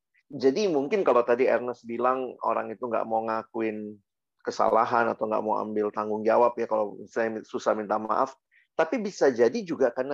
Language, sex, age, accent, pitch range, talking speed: Indonesian, male, 30-49, native, 110-135 Hz, 170 wpm